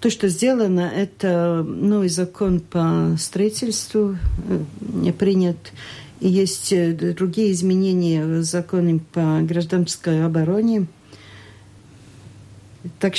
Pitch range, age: 145-190 Hz, 50-69